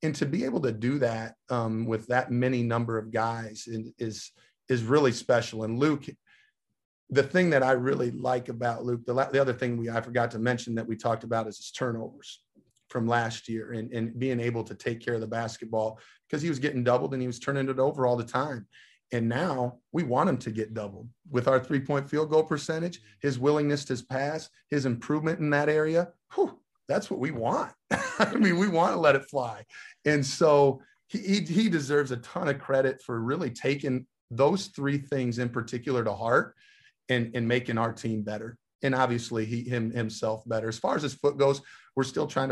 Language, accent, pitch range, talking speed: English, American, 115-140 Hz, 210 wpm